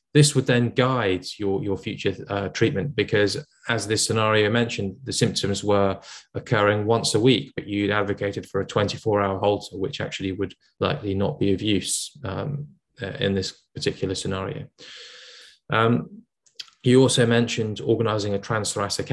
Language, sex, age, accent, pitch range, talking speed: English, male, 20-39, British, 100-115 Hz, 150 wpm